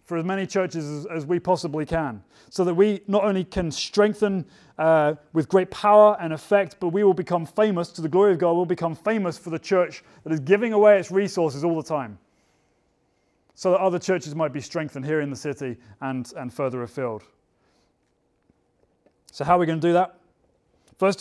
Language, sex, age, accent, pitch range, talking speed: English, male, 30-49, British, 150-185 Hz, 200 wpm